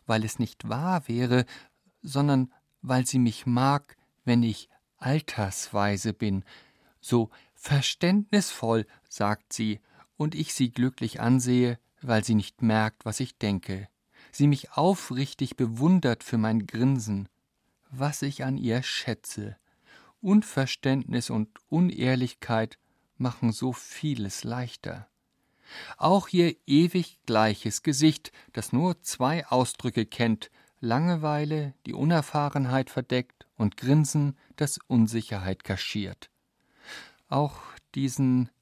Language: German